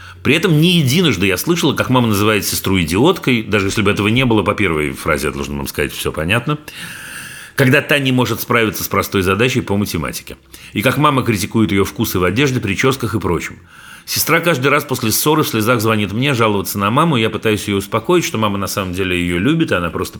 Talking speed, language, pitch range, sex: 215 wpm, Russian, 95-135 Hz, male